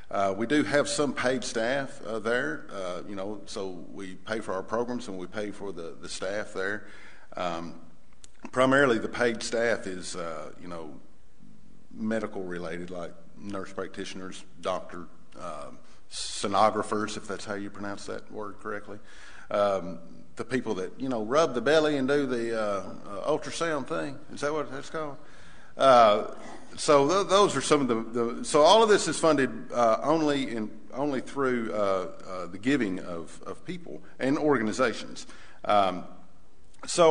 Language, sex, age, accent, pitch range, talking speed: English, male, 50-69, American, 95-140 Hz, 165 wpm